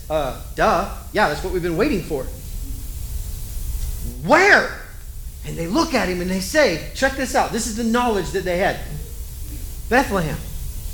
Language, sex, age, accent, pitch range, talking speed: English, male, 40-59, American, 155-245 Hz, 160 wpm